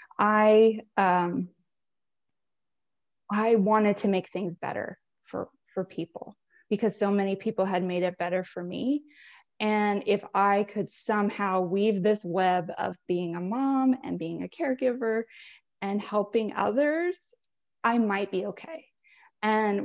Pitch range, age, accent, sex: 190-230 Hz, 20-39, American, female